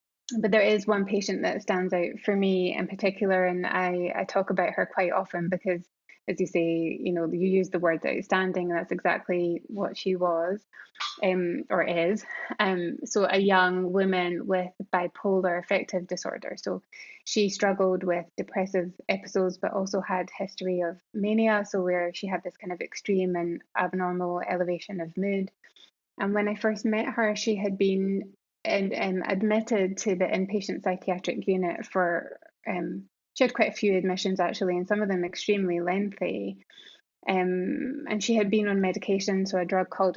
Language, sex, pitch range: English, female, 180-200 Hz